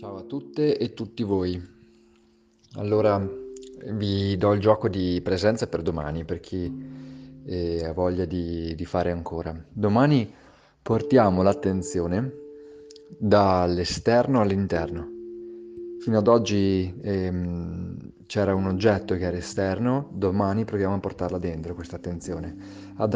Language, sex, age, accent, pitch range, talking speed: Italian, male, 30-49, native, 90-115 Hz, 120 wpm